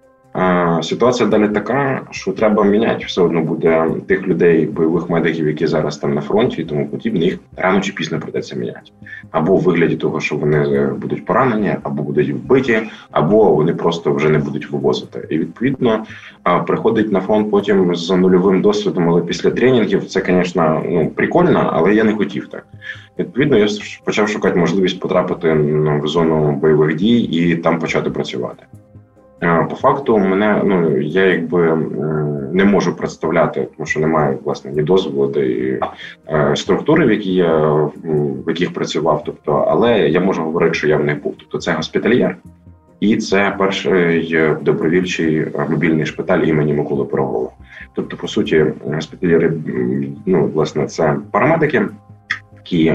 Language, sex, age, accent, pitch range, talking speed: Ukrainian, male, 20-39, native, 75-95 Hz, 150 wpm